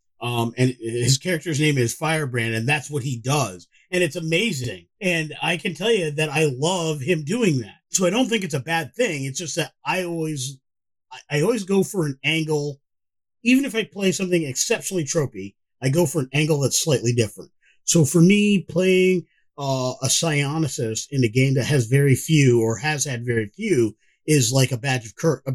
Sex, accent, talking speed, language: male, American, 200 wpm, English